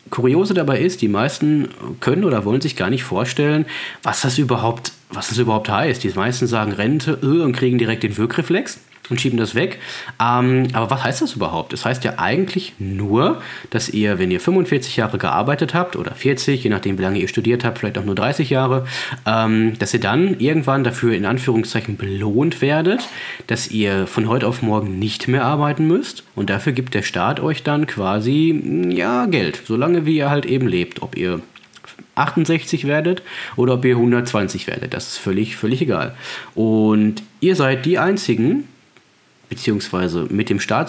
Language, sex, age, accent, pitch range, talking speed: German, male, 30-49, German, 110-155 Hz, 180 wpm